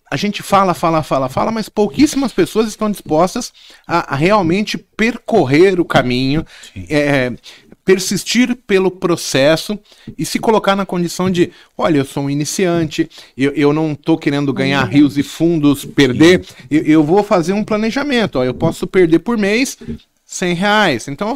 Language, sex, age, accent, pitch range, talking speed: Portuguese, male, 30-49, Brazilian, 140-200 Hz, 155 wpm